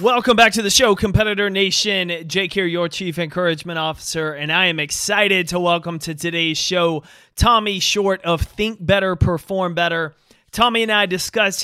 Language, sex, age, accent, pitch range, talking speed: English, male, 30-49, American, 160-200 Hz, 170 wpm